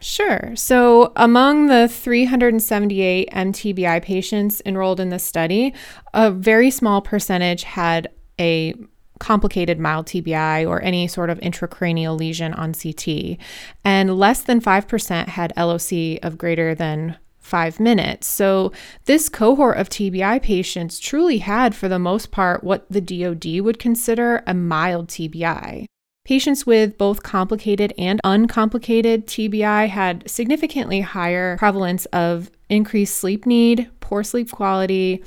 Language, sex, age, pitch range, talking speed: English, female, 20-39, 180-220 Hz, 130 wpm